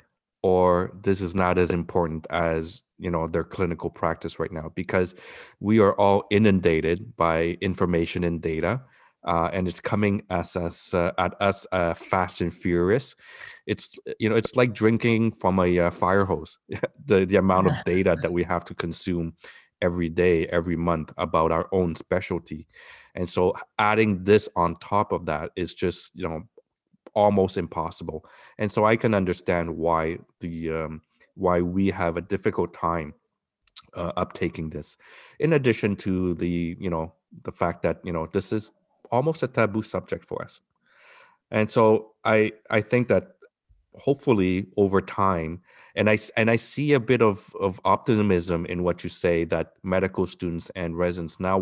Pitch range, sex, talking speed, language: 85-105 Hz, male, 170 wpm, English